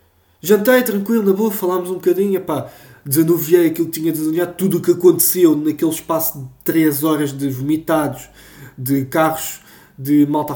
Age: 20-39